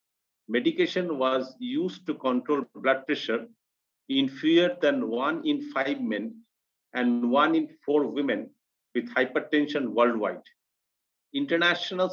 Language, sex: English, male